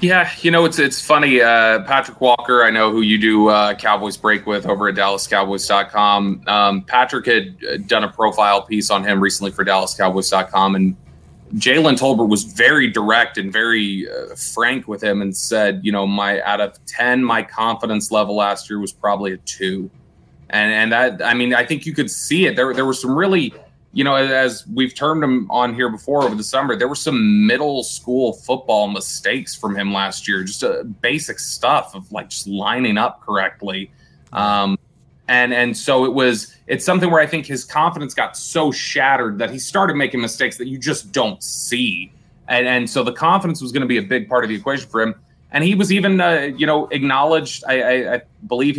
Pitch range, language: 100-135 Hz, English